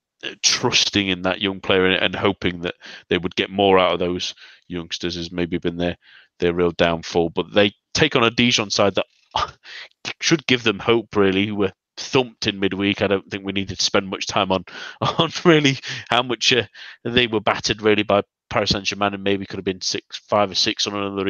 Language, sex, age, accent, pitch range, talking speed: English, male, 30-49, British, 95-125 Hz, 210 wpm